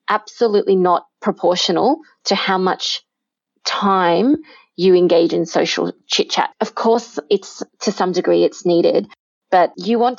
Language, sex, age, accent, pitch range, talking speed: English, female, 20-39, Australian, 180-240 Hz, 140 wpm